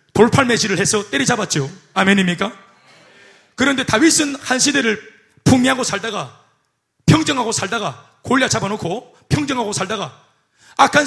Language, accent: Korean, native